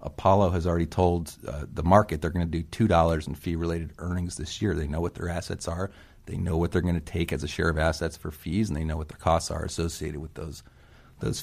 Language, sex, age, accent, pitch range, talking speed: English, male, 30-49, American, 80-95 Hz, 250 wpm